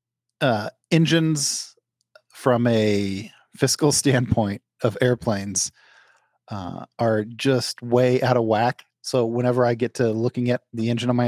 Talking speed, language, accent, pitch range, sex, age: 140 wpm, English, American, 105-125 Hz, male, 40-59